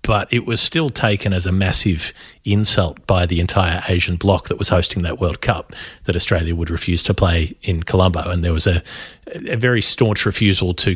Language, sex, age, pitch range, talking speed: English, male, 30-49, 90-105 Hz, 205 wpm